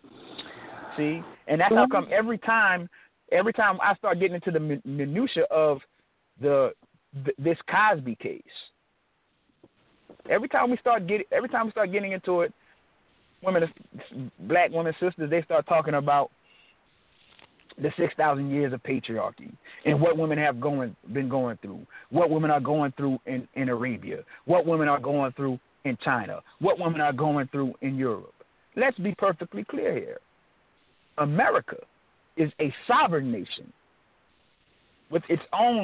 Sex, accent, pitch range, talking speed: male, American, 140-180 Hz, 150 wpm